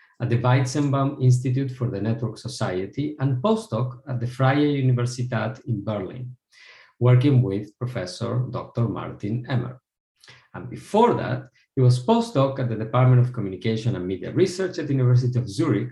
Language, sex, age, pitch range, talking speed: English, male, 50-69, 115-145 Hz, 155 wpm